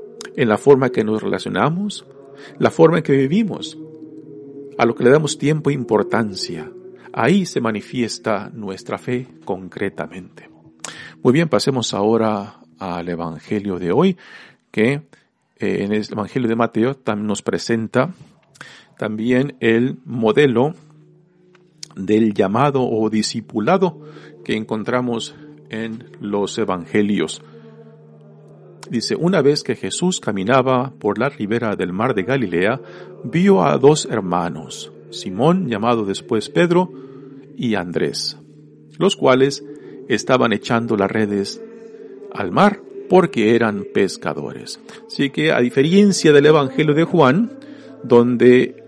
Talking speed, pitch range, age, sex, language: 120 wpm, 110-155 Hz, 50-69, male, Spanish